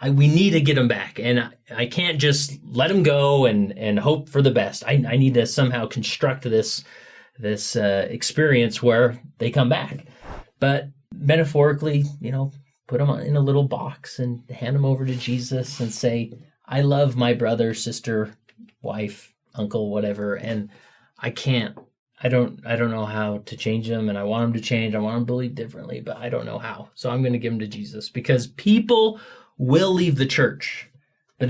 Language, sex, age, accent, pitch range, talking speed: English, male, 30-49, American, 115-145 Hz, 200 wpm